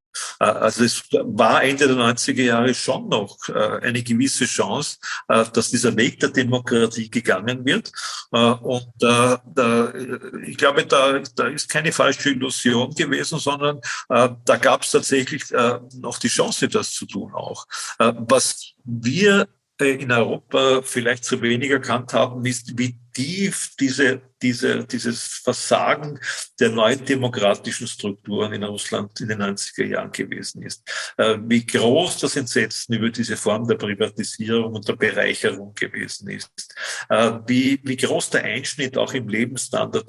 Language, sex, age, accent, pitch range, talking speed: German, male, 50-69, German, 115-130 Hz, 135 wpm